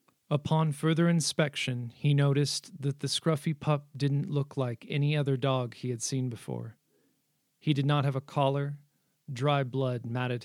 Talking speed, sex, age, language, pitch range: 160 wpm, male, 40-59, English, 125-150 Hz